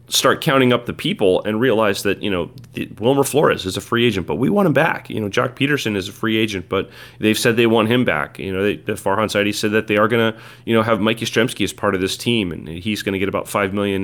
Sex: male